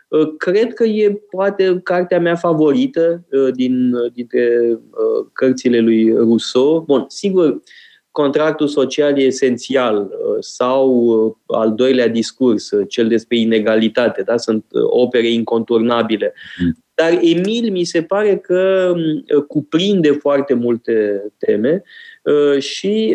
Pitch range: 120-170 Hz